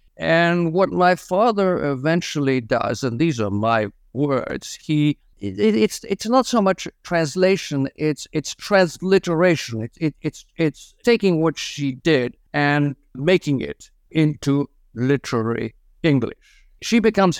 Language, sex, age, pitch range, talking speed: English, male, 60-79, 120-170 Hz, 130 wpm